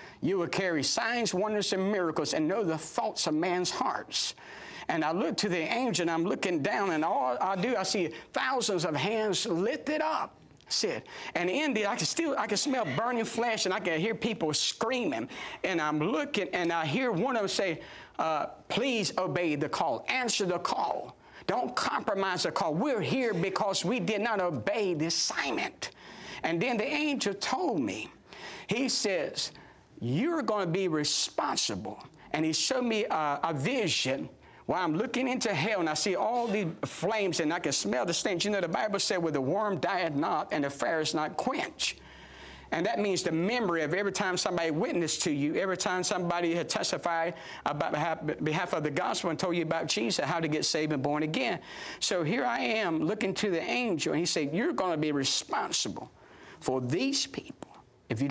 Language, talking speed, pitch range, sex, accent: English, 200 wpm, 155-220 Hz, male, American